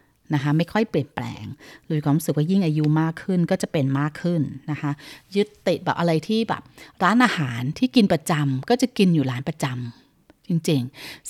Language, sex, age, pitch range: Thai, female, 30-49, 150-210 Hz